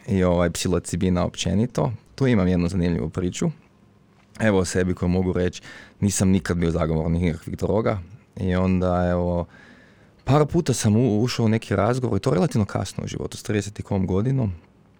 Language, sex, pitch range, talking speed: Croatian, male, 90-110 Hz, 170 wpm